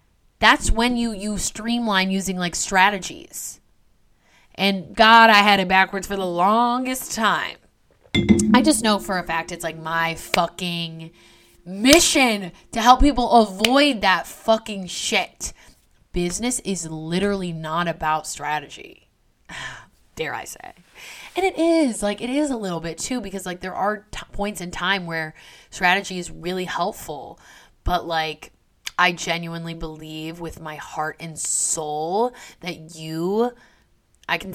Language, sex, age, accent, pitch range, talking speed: English, female, 20-39, American, 165-210 Hz, 140 wpm